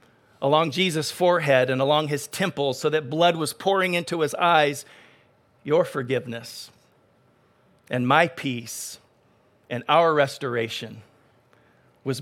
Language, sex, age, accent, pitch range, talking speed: English, male, 40-59, American, 140-175 Hz, 120 wpm